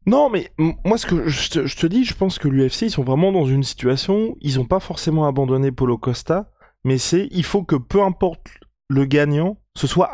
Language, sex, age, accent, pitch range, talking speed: French, male, 20-39, French, 135-170 Hz, 230 wpm